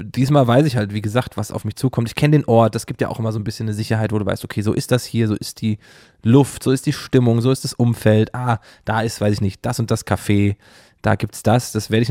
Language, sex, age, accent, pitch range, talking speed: German, male, 20-39, German, 100-120 Hz, 300 wpm